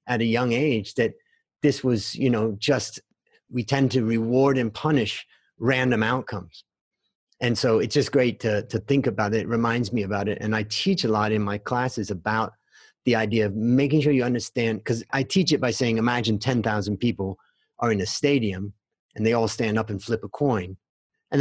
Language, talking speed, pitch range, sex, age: English, 200 wpm, 110-140 Hz, male, 30-49